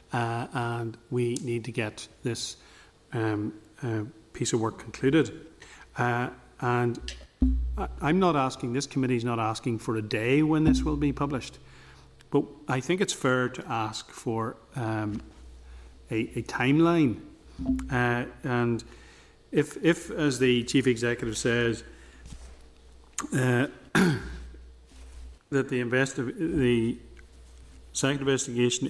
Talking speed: 125 wpm